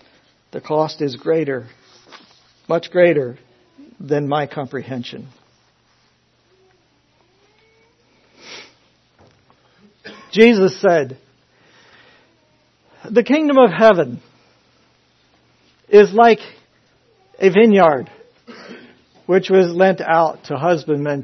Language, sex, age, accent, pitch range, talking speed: English, male, 60-79, American, 135-195 Hz, 70 wpm